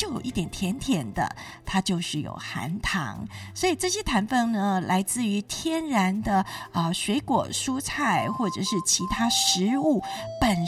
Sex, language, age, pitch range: female, Chinese, 20-39, 170-250 Hz